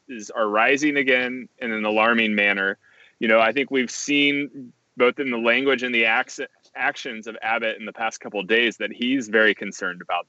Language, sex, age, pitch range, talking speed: English, male, 20-39, 105-140 Hz, 200 wpm